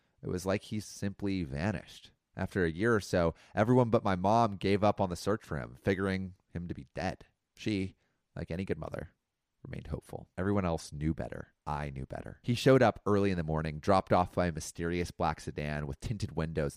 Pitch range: 80-115 Hz